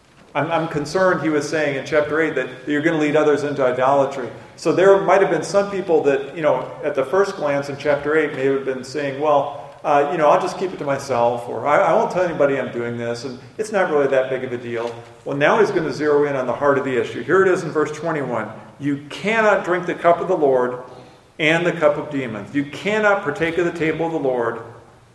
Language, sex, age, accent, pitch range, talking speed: English, male, 40-59, American, 120-150 Hz, 250 wpm